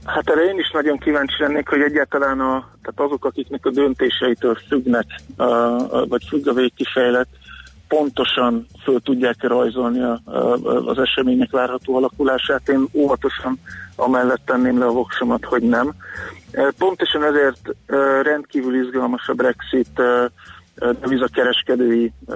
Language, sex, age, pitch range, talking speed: Hungarian, male, 50-69, 125-135 Hz, 130 wpm